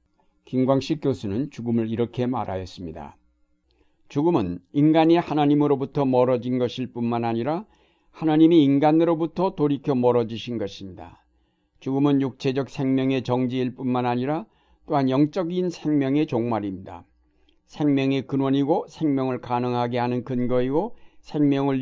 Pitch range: 115-145 Hz